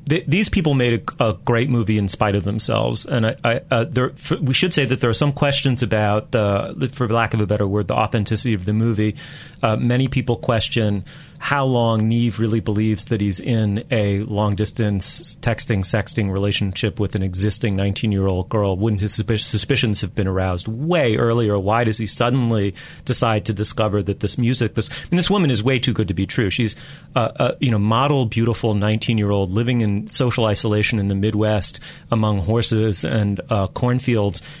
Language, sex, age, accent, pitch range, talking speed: English, male, 30-49, American, 105-130 Hz, 185 wpm